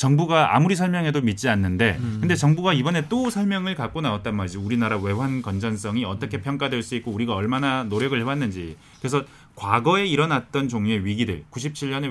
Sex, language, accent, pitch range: male, Korean, native, 110-150 Hz